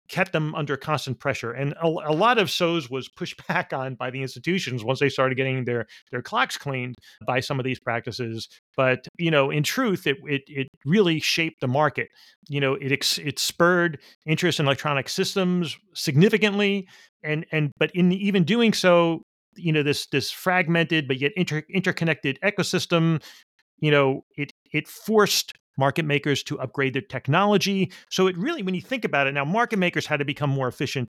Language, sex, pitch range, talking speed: English, male, 135-180 Hz, 190 wpm